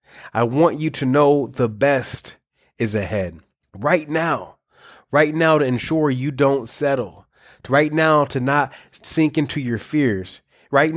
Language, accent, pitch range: English, American, 115-145 Hz